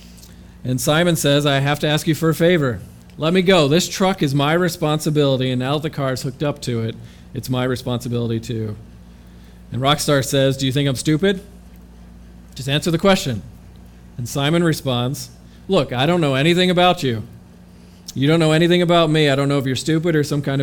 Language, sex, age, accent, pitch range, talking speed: English, male, 40-59, American, 105-145 Hz, 200 wpm